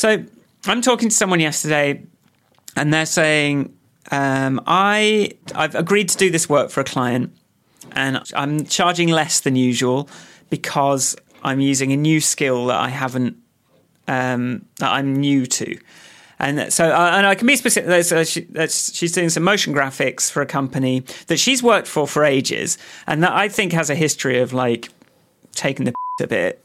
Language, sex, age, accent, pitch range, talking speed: English, male, 30-49, British, 135-180 Hz, 175 wpm